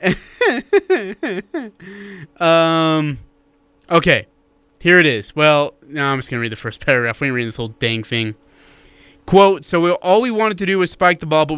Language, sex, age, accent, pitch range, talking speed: English, male, 20-39, American, 135-160 Hz, 175 wpm